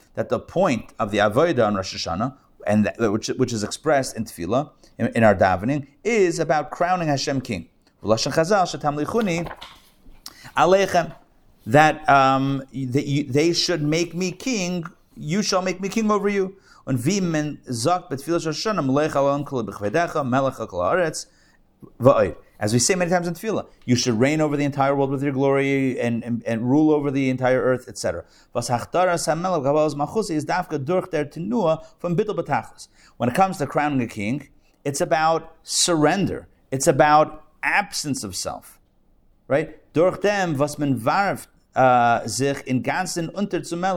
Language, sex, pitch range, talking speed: English, male, 130-175 Hz, 115 wpm